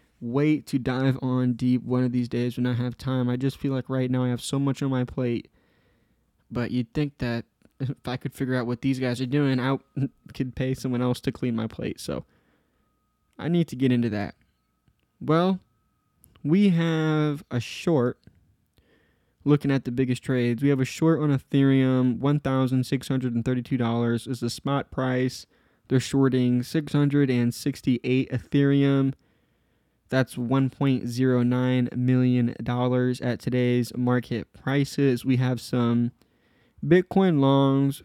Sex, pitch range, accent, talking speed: male, 125-140 Hz, American, 145 wpm